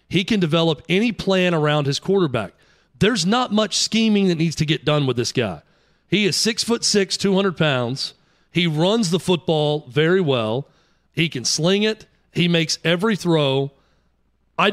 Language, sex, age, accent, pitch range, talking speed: English, male, 40-59, American, 145-185 Hz, 170 wpm